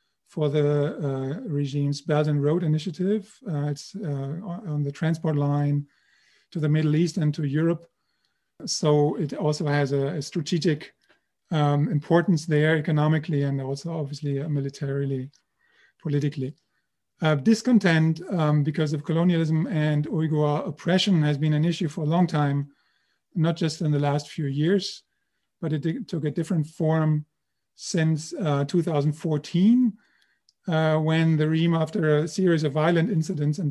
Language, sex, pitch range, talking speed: English, male, 145-165 Hz, 145 wpm